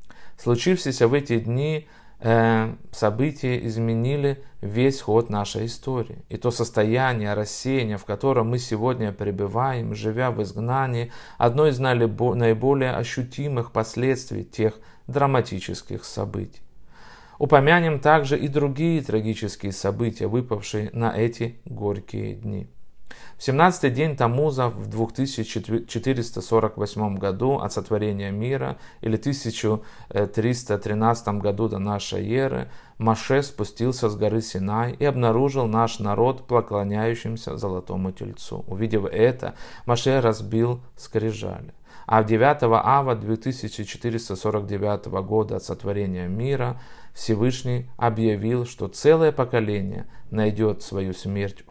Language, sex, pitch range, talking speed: Russian, male, 105-130 Hz, 105 wpm